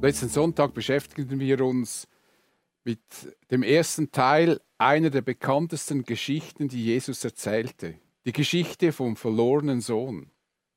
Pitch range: 135-180 Hz